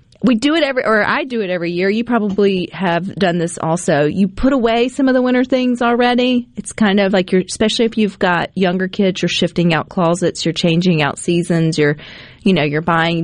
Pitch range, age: 165-210 Hz, 40-59